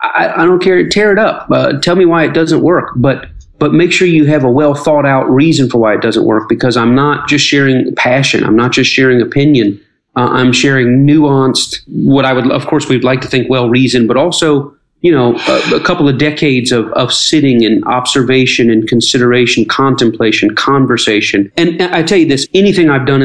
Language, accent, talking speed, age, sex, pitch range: English, American, 210 wpm, 40-59, male, 120-145 Hz